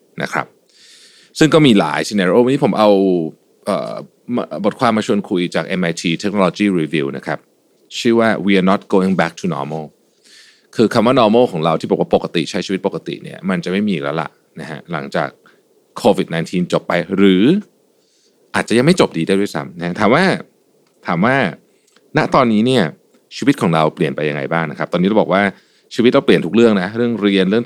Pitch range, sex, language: 90-130 Hz, male, Thai